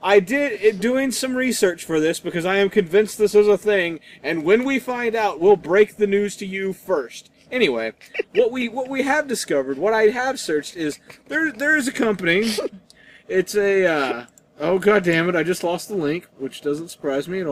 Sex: male